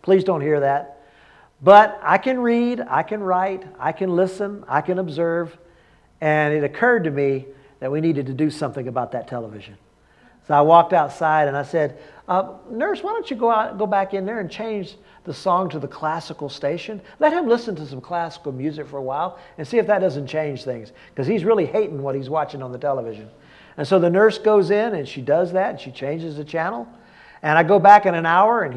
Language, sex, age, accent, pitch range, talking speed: English, male, 50-69, American, 150-215 Hz, 220 wpm